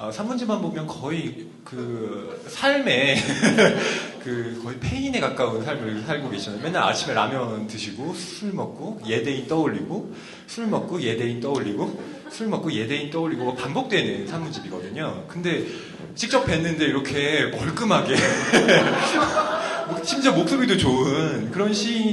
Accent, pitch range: native, 115-195 Hz